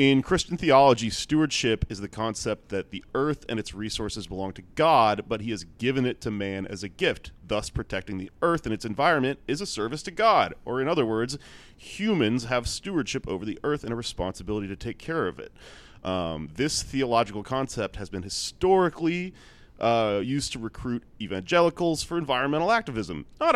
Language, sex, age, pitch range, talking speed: English, male, 30-49, 105-145 Hz, 185 wpm